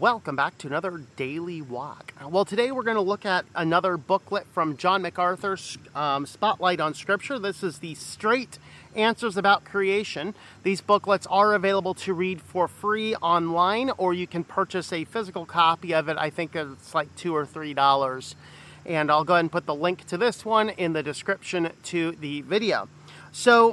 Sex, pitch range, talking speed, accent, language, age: male, 170-215 Hz, 180 wpm, American, English, 40-59